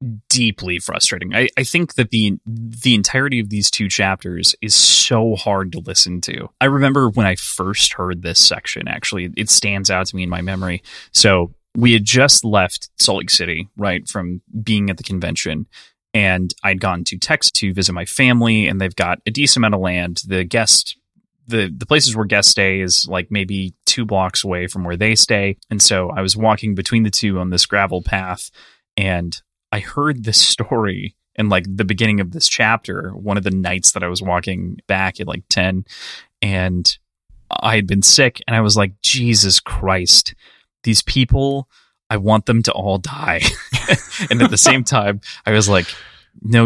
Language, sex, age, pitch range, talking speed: English, male, 20-39, 95-115 Hz, 190 wpm